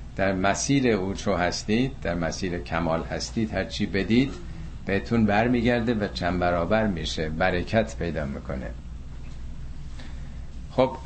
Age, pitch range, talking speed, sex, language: 50-69, 75-125 Hz, 115 wpm, male, Persian